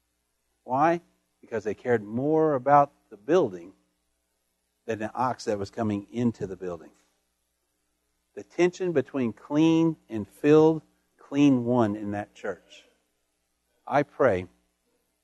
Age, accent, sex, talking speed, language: 50-69, American, male, 120 wpm, English